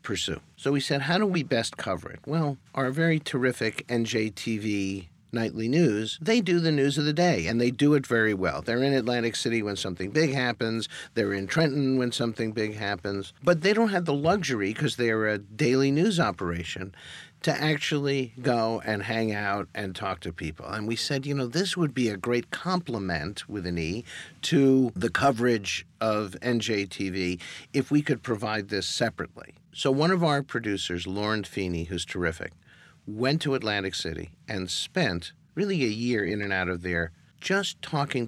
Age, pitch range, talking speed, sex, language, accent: 50-69, 95-135 Hz, 185 wpm, male, English, American